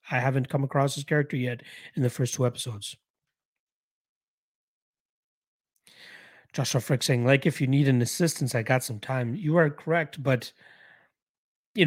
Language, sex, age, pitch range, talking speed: English, male, 30-49, 125-155 Hz, 150 wpm